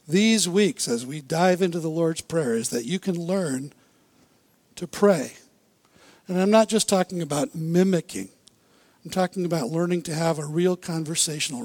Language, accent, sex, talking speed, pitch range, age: English, American, male, 165 wpm, 170-210 Hz, 60-79